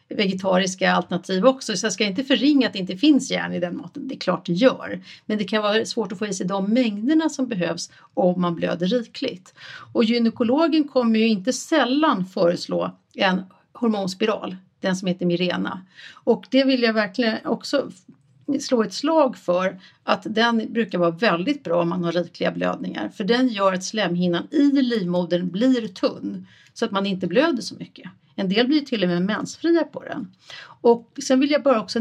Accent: native